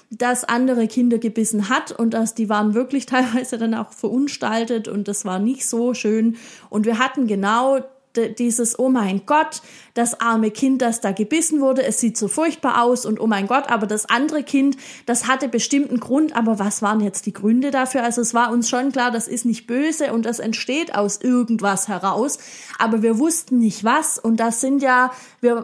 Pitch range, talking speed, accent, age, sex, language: 215-260 Hz, 200 wpm, German, 20-39, female, German